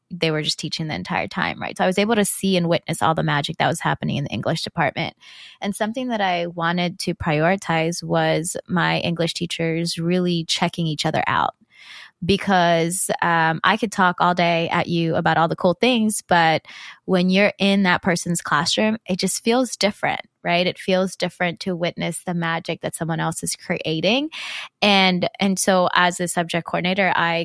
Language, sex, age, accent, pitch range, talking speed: English, female, 20-39, American, 170-195 Hz, 190 wpm